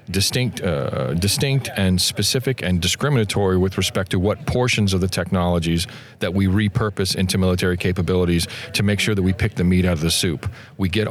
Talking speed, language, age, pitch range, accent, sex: 190 wpm, English, 40-59, 85-110 Hz, American, male